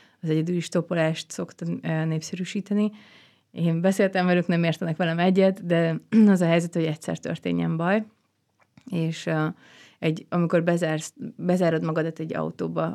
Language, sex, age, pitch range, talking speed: Hungarian, female, 30-49, 155-180 Hz, 135 wpm